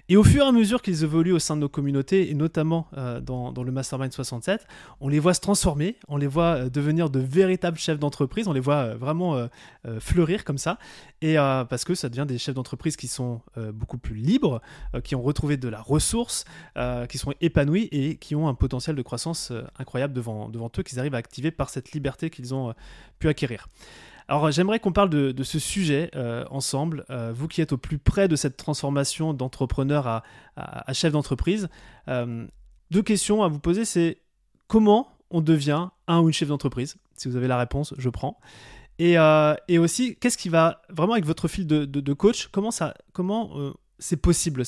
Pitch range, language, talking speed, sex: 130-170 Hz, French, 200 wpm, male